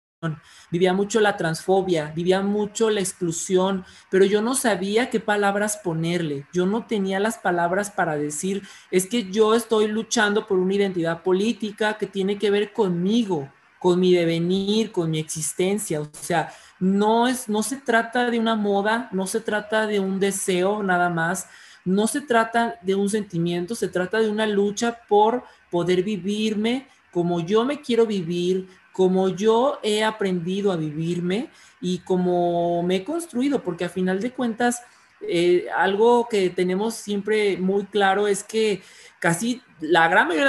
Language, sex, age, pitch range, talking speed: Spanish, male, 40-59, 175-220 Hz, 160 wpm